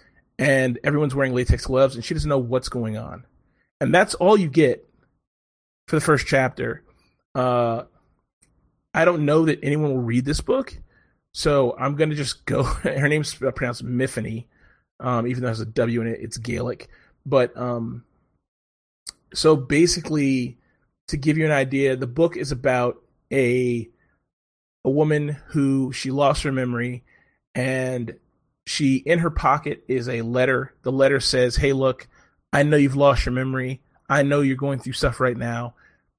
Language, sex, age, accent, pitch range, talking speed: English, male, 30-49, American, 125-145 Hz, 165 wpm